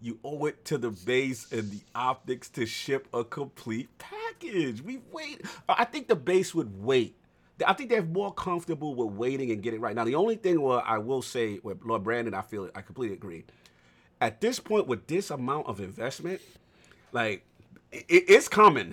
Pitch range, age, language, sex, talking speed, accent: 105-145 Hz, 40-59, English, male, 195 wpm, American